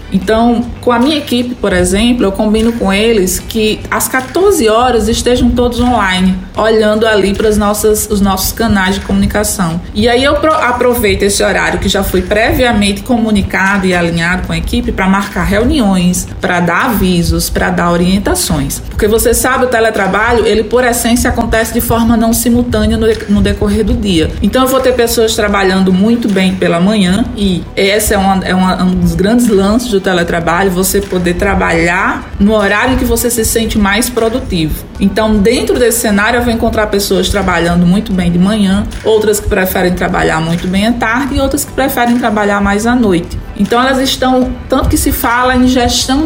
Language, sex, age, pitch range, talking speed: Portuguese, female, 20-39, 195-245 Hz, 180 wpm